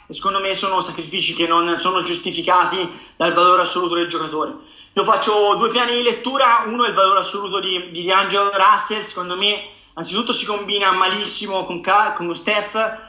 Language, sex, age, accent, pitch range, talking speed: Italian, male, 30-49, native, 170-195 Hz, 165 wpm